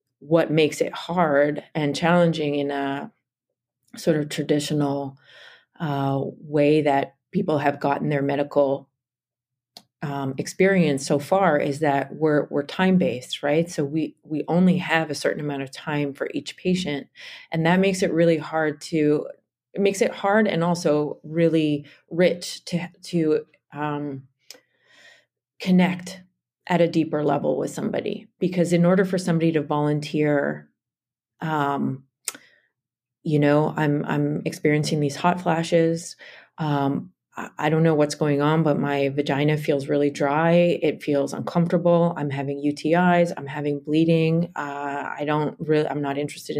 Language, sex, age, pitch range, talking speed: English, female, 30-49, 145-170 Hz, 145 wpm